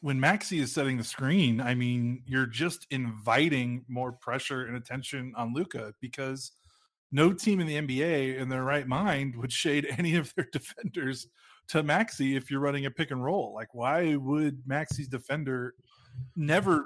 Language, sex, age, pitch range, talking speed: English, male, 30-49, 125-145 Hz, 170 wpm